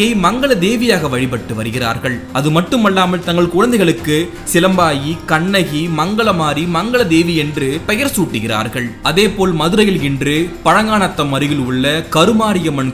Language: Tamil